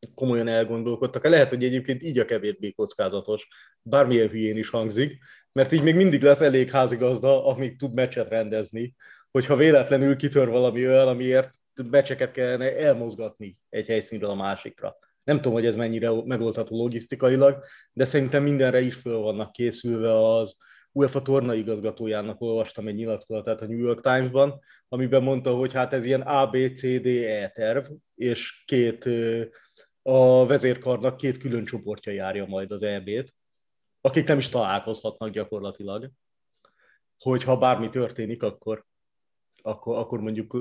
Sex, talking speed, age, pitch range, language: male, 140 wpm, 30-49, 110-135 Hz, Hungarian